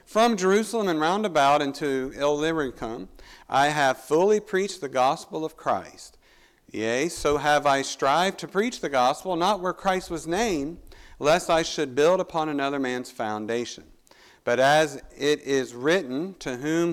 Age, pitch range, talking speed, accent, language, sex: 50-69, 125-170 Hz, 155 wpm, American, English, male